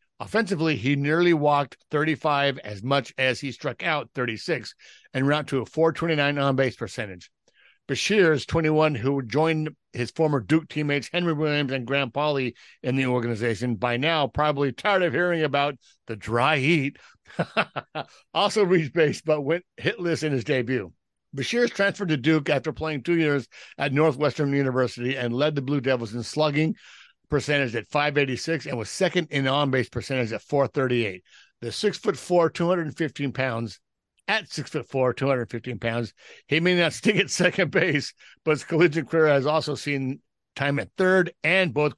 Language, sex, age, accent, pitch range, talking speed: English, male, 60-79, American, 130-160 Hz, 165 wpm